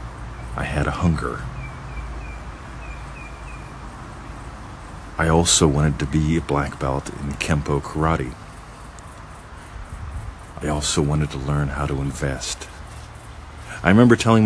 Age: 50-69